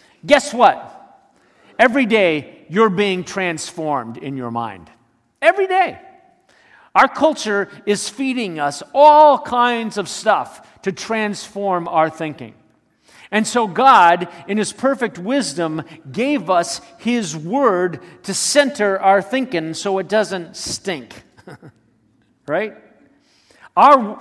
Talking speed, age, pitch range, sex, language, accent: 115 wpm, 50-69, 165-235 Hz, male, English, American